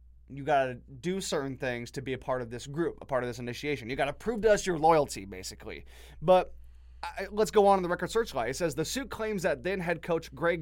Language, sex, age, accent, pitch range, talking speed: English, male, 20-39, American, 125-175 Hz, 260 wpm